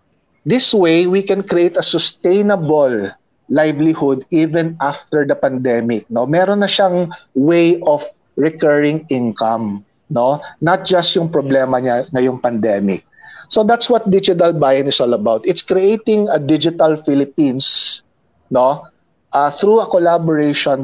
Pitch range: 130-175 Hz